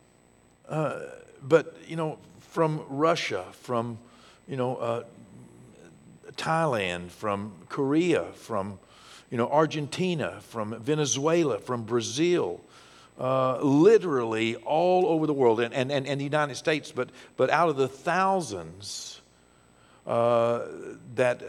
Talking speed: 115 wpm